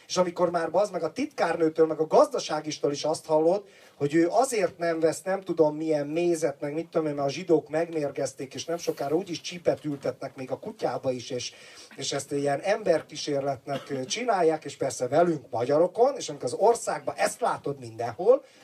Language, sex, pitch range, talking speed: Hungarian, male, 140-170 Hz, 185 wpm